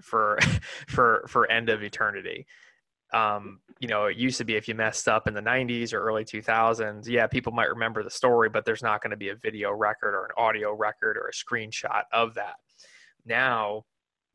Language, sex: English, male